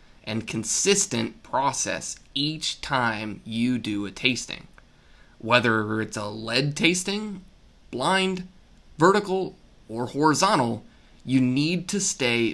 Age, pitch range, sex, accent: 20-39, 115-160 Hz, male, American